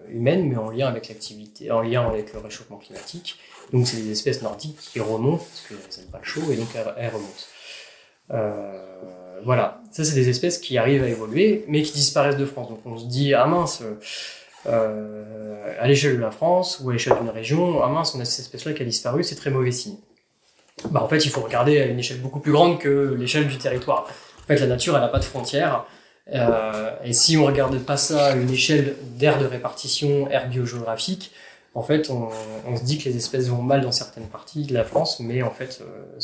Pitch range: 115-140 Hz